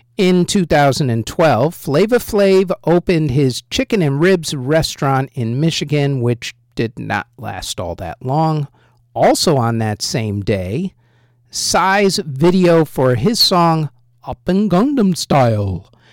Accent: American